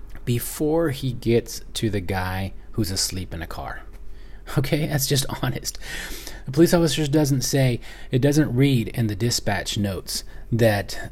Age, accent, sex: 30-49, American, male